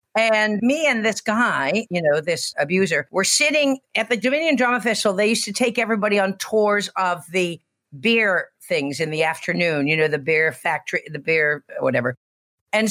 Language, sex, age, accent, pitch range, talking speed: English, female, 50-69, American, 180-245 Hz, 180 wpm